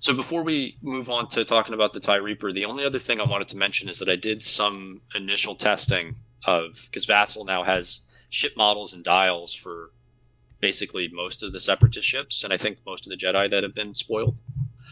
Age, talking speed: 30-49, 215 wpm